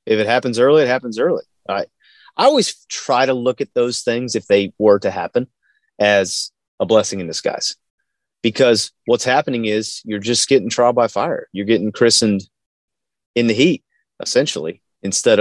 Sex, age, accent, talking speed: male, 30-49, American, 170 wpm